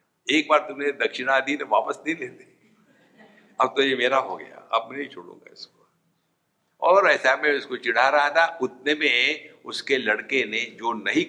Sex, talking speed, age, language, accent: male, 175 wpm, 60-79, English, Indian